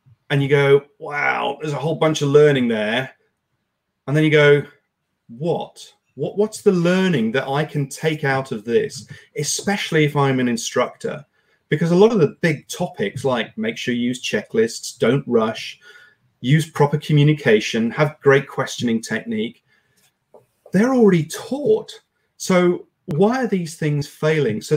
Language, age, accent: English, 30-49, British